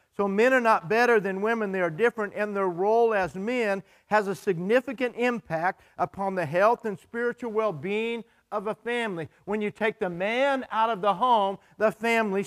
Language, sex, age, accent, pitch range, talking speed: English, male, 50-69, American, 190-235 Hz, 190 wpm